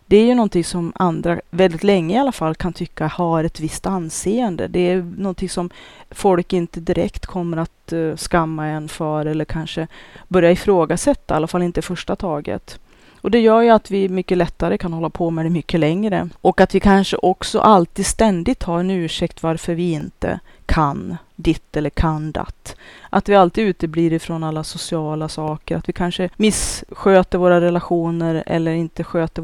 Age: 30-49